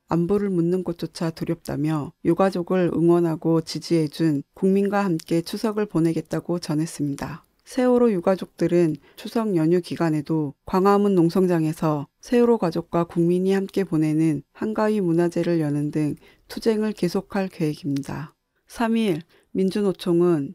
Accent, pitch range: native, 160-195 Hz